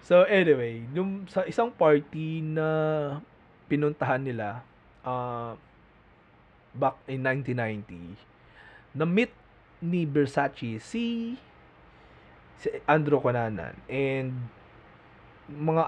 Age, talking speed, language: 20-39, 85 wpm, English